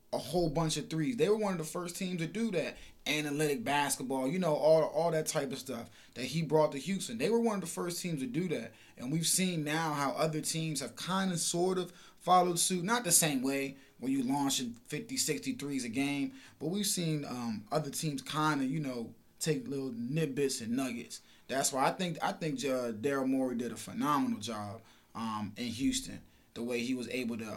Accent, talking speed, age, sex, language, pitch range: American, 225 wpm, 20-39, male, English, 135-180 Hz